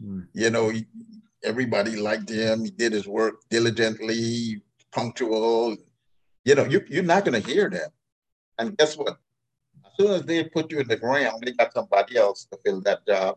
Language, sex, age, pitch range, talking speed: English, male, 50-69, 110-135 Hz, 180 wpm